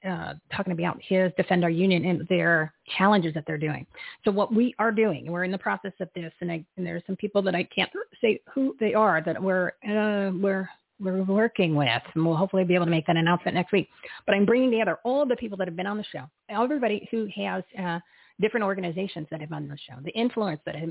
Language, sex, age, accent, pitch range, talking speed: English, female, 40-59, American, 175-205 Hz, 245 wpm